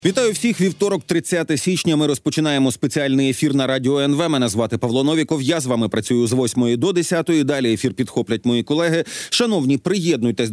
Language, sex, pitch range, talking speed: Ukrainian, male, 130-175 Hz, 175 wpm